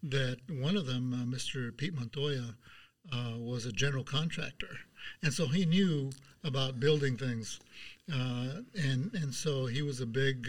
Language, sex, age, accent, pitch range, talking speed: English, male, 60-79, American, 125-155 Hz, 160 wpm